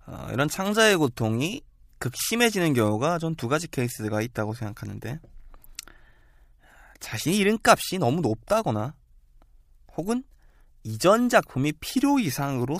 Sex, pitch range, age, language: male, 110-165 Hz, 20-39, Korean